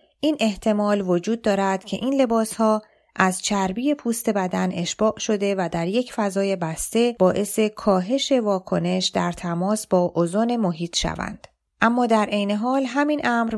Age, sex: 30-49, female